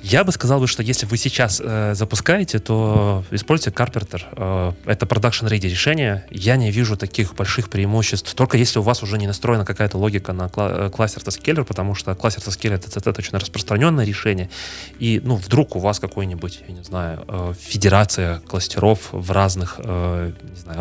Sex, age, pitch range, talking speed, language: male, 30-49, 95-115 Hz, 175 wpm, Russian